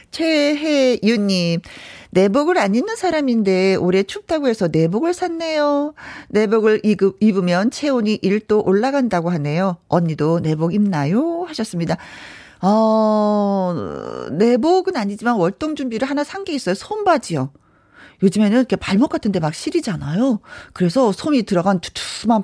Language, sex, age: Korean, female, 40-59